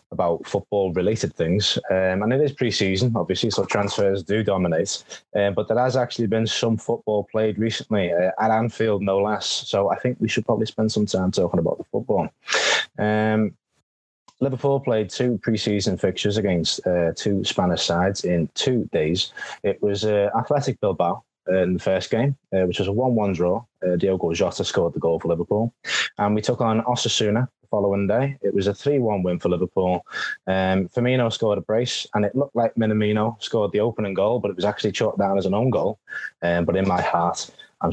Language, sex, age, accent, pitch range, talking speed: English, male, 20-39, British, 95-115 Hz, 195 wpm